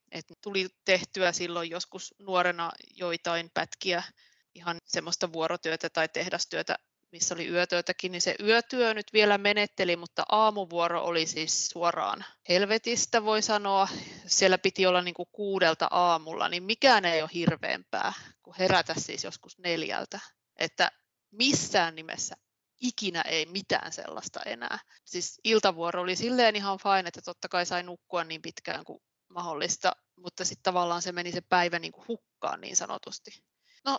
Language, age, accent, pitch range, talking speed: Finnish, 30-49, native, 175-205 Hz, 145 wpm